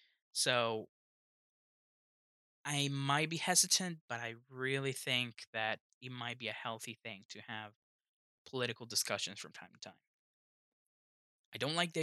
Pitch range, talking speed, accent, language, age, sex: 110-135 Hz, 140 wpm, American, English, 20-39, male